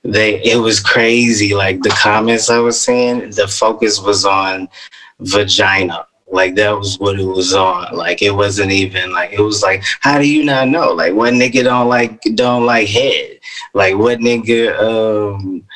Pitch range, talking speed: 105-130 Hz, 180 wpm